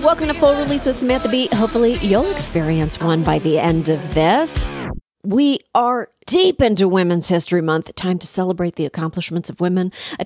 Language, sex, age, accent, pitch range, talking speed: English, female, 40-59, American, 160-235 Hz, 185 wpm